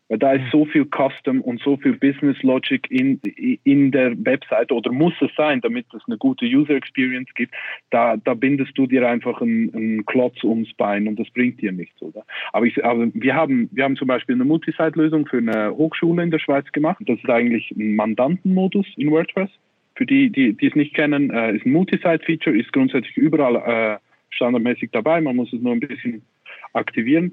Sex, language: male, German